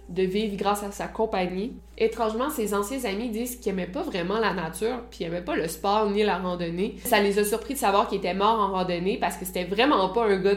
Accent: Canadian